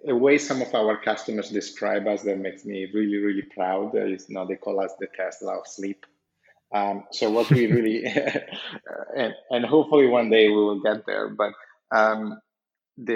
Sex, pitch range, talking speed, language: male, 100-115 Hz, 185 wpm, English